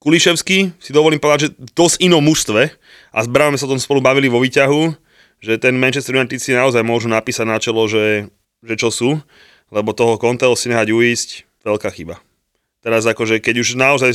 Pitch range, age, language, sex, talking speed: 110-130 Hz, 20-39, Slovak, male, 190 wpm